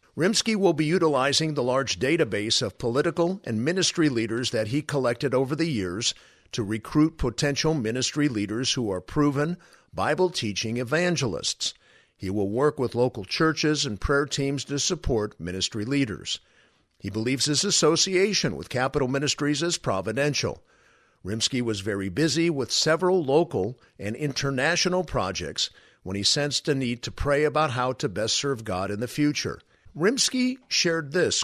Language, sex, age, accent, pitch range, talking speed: English, male, 50-69, American, 120-155 Hz, 150 wpm